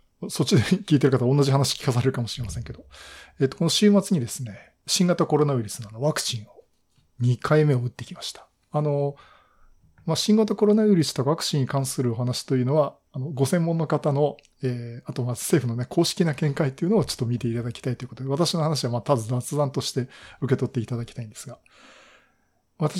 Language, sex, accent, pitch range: Japanese, male, native, 125-160 Hz